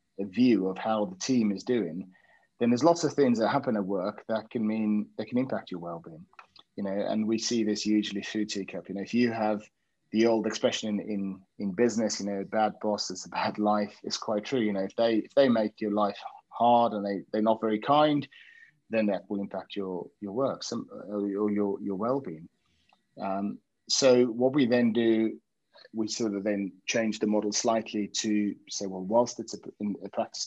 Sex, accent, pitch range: male, British, 100-115 Hz